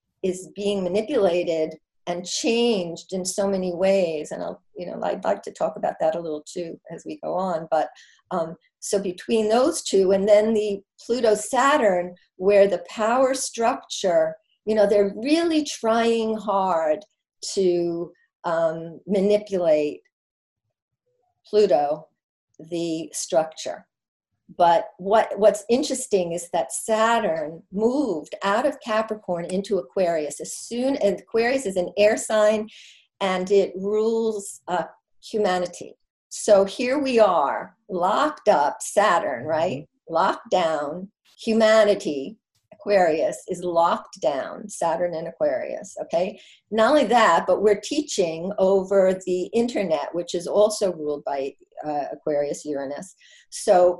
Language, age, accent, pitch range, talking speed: English, 50-69, American, 180-225 Hz, 130 wpm